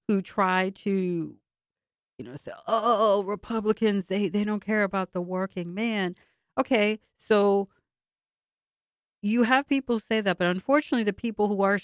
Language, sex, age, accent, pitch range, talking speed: English, female, 50-69, American, 145-195 Hz, 145 wpm